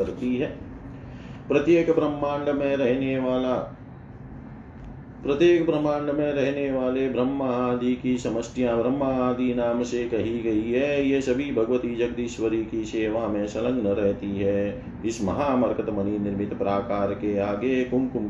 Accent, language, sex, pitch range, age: native, Hindi, male, 100-125 Hz, 40-59